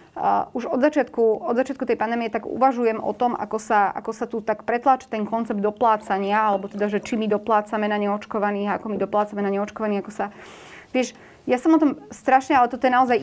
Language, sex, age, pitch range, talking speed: Slovak, female, 30-49, 205-245 Hz, 215 wpm